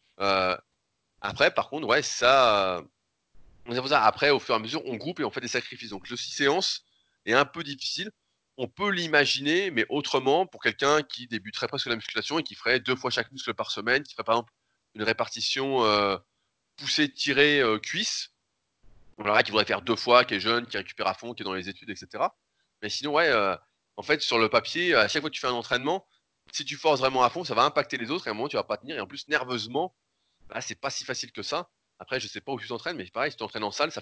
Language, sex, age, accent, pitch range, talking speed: French, male, 20-39, French, 110-155 Hz, 255 wpm